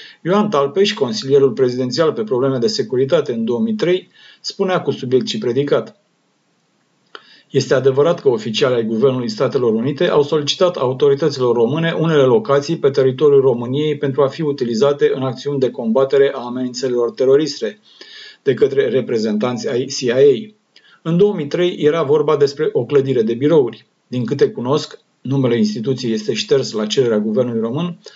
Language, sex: Romanian, male